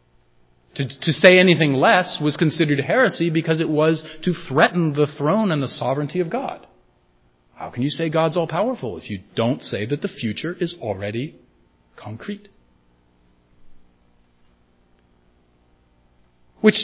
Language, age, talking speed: English, 40-59, 130 wpm